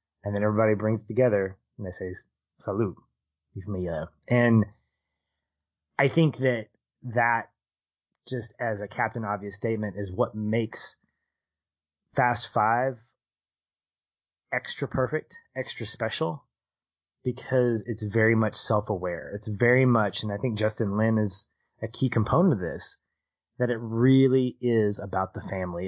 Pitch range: 95-120 Hz